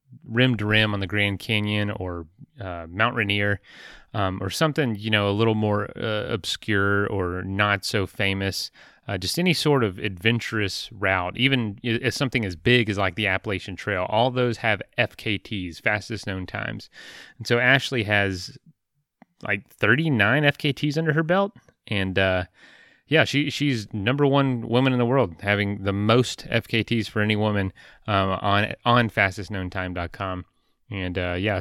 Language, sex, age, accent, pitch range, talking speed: English, male, 30-49, American, 95-120 Hz, 160 wpm